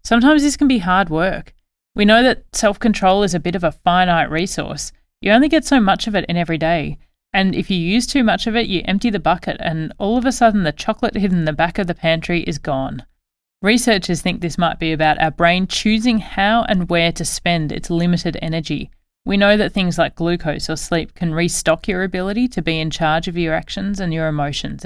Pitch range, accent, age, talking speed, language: 165-230 Hz, Australian, 30-49, 225 wpm, English